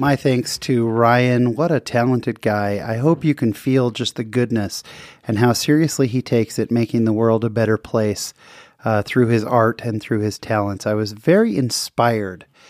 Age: 30-49